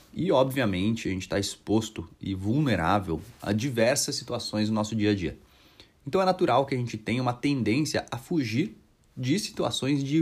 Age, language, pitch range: 30-49, Portuguese, 100-135 Hz